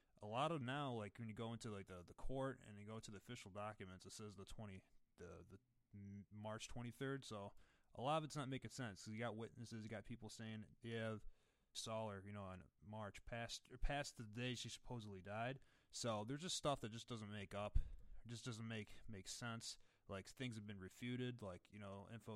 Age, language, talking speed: 20-39, English, 220 wpm